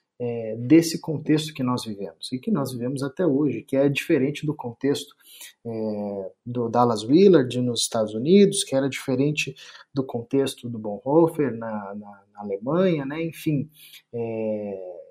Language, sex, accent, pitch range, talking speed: Portuguese, male, Brazilian, 125-160 Hz, 145 wpm